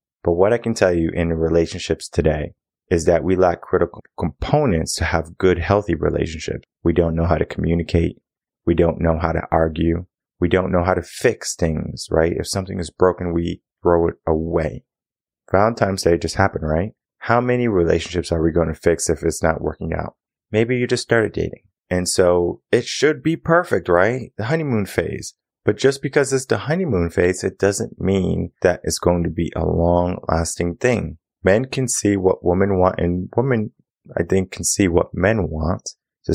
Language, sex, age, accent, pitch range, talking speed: English, male, 30-49, American, 85-105 Hz, 190 wpm